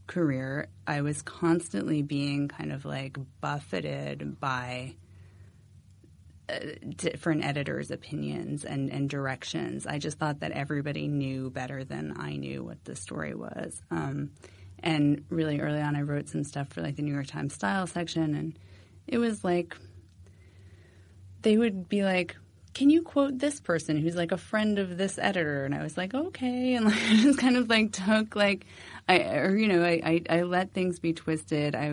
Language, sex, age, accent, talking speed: English, female, 30-49, American, 175 wpm